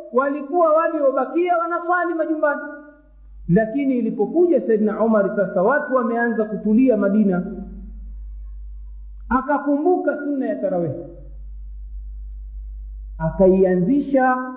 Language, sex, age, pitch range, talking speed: Swahili, male, 50-69, 215-280 Hz, 75 wpm